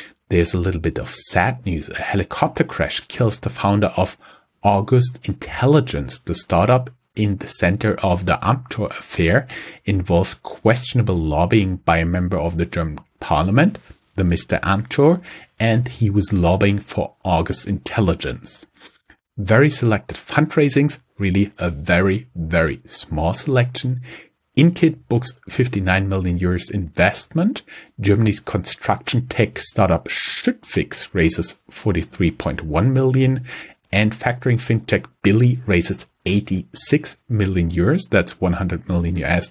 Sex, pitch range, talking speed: male, 90-125 Hz, 125 wpm